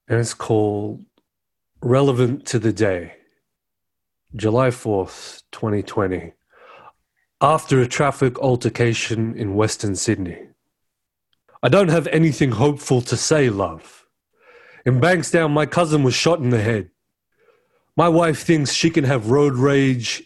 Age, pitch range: 30-49, 115-155 Hz